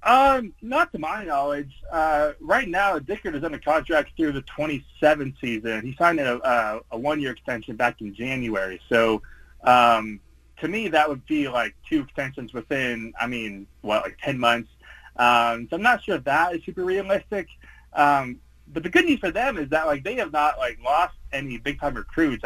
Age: 30-49